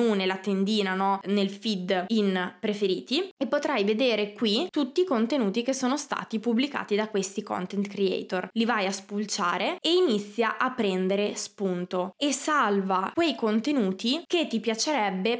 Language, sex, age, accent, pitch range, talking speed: Italian, female, 20-39, native, 210-240 Hz, 150 wpm